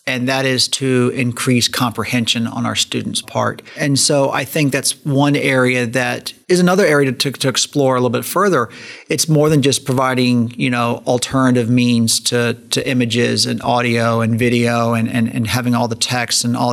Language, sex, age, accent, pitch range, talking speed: English, male, 40-59, American, 125-150 Hz, 190 wpm